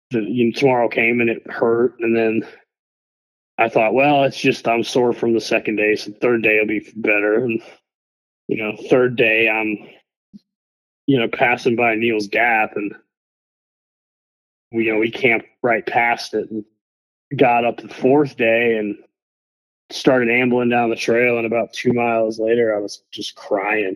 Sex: male